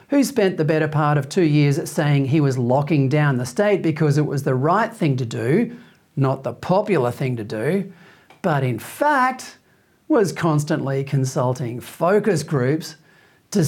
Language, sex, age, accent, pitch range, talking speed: English, male, 40-59, Australian, 135-190 Hz, 165 wpm